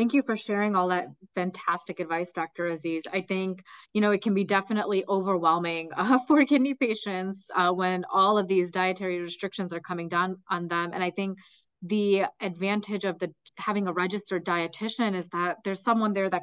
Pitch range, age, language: 175-225 Hz, 30-49, English